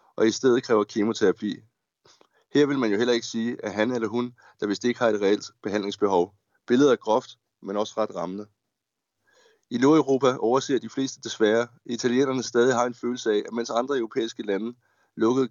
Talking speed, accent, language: 185 wpm, native, Danish